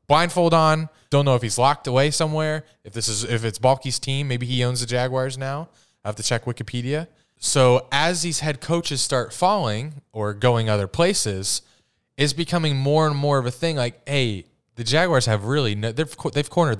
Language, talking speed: English, 195 wpm